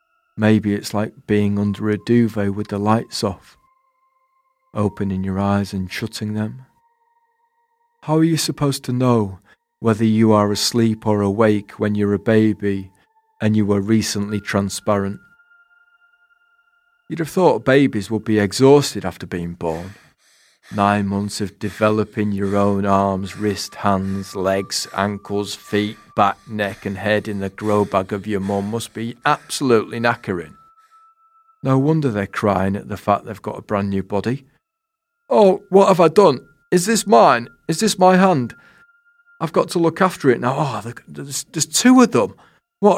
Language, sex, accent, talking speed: English, male, British, 160 wpm